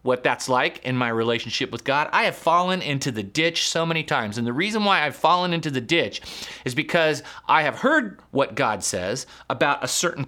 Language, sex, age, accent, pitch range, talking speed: English, male, 30-49, American, 135-180 Hz, 215 wpm